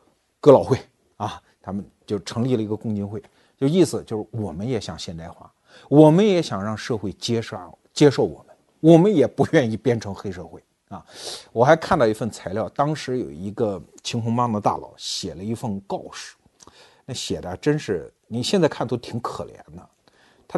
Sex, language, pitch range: male, Chinese, 105-160 Hz